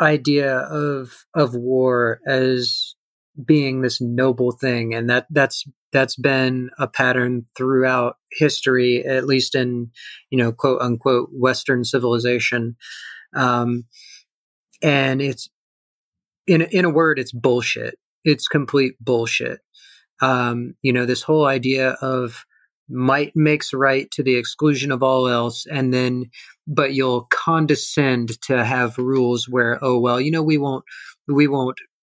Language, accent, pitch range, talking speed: English, American, 125-150 Hz, 135 wpm